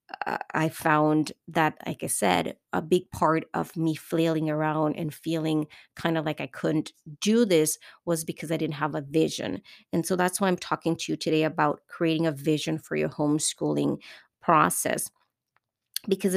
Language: English